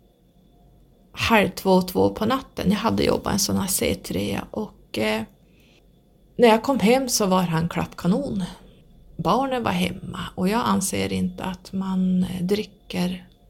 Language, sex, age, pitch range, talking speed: Swedish, female, 30-49, 165-190 Hz, 145 wpm